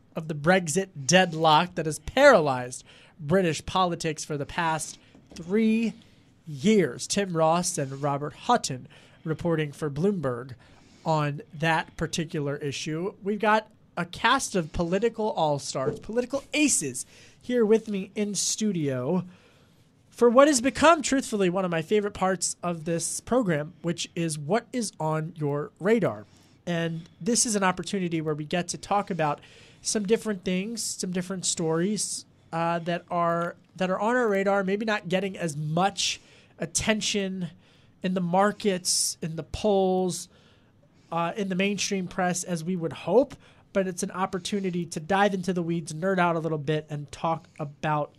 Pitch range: 155-200 Hz